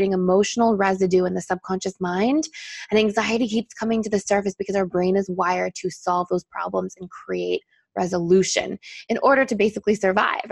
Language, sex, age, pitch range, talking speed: English, female, 20-39, 185-220 Hz, 170 wpm